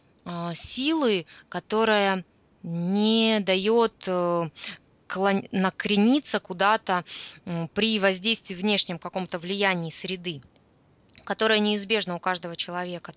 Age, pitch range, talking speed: 20-39, 185-220 Hz, 80 wpm